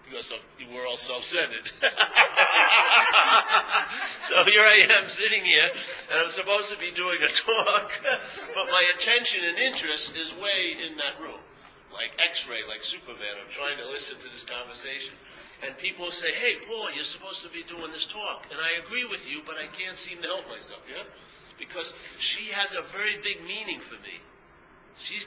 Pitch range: 160-205 Hz